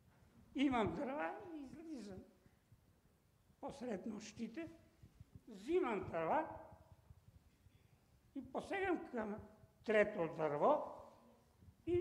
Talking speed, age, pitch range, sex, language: 70 wpm, 60-79, 215-330 Hz, male, English